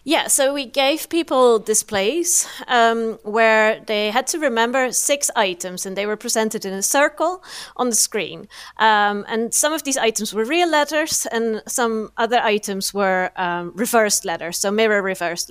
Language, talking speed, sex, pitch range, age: English, 170 wpm, female, 215-275 Hz, 30-49